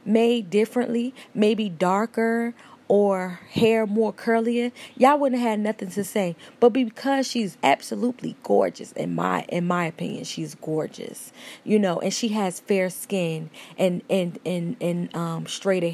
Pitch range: 180-240 Hz